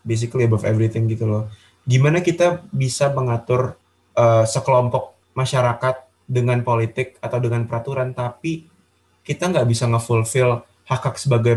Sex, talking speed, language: male, 130 wpm, Indonesian